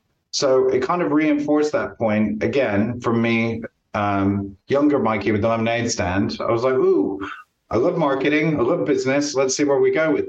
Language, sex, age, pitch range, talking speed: English, male, 30-49, 115-140 Hz, 190 wpm